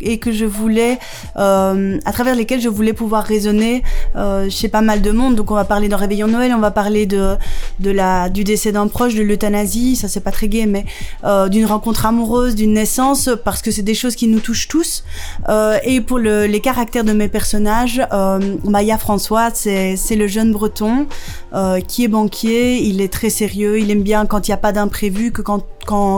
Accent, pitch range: French, 200-225 Hz